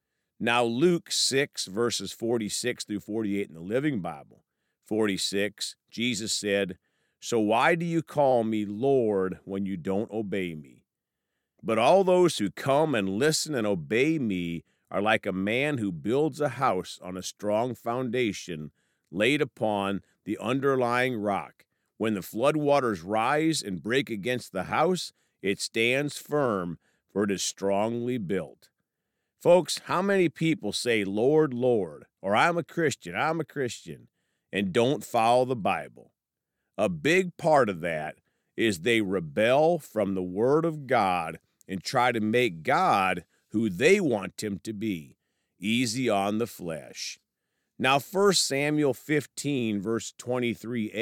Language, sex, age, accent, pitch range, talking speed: English, male, 50-69, American, 100-145 Hz, 145 wpm